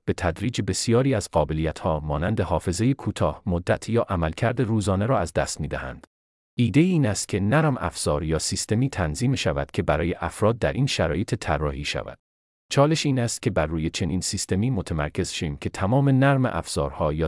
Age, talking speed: 40-59, 175 wpm